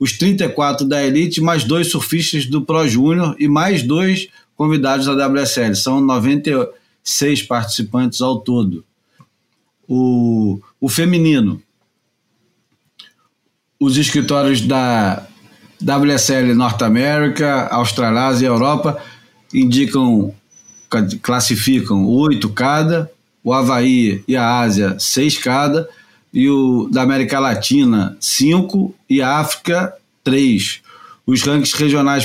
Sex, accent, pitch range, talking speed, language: male, Brazilian, 120-155 Hz, 105 wpm, Portuguese